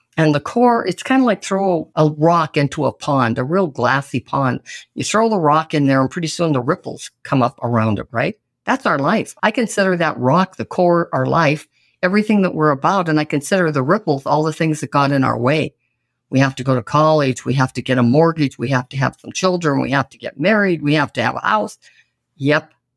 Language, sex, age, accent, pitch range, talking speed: English, female, 50-69, American, 130-175 Hz, 240 wpm